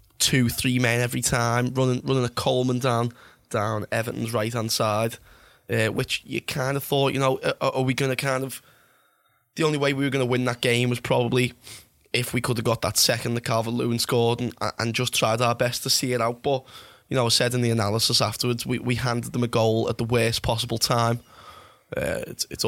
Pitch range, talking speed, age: 115-125 Hz, 230 wpm, 10-29